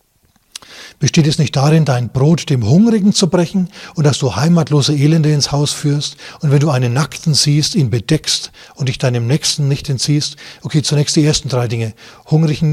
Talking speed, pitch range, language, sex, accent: 185 wpm, 130-150 Hz, German, male, German